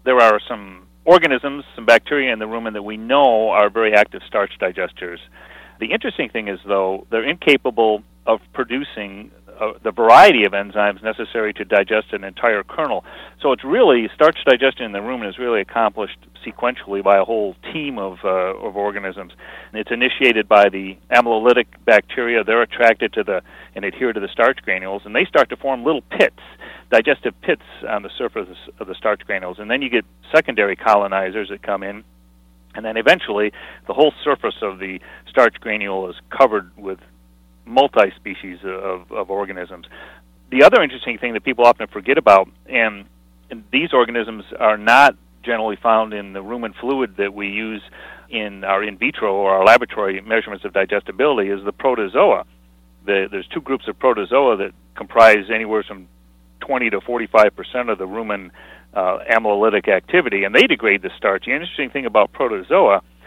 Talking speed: 170 wpm